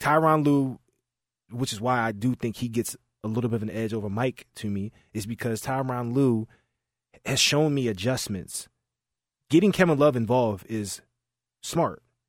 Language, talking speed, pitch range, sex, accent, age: English, 165 wpm, 115-135 Hz, male, American, 20-39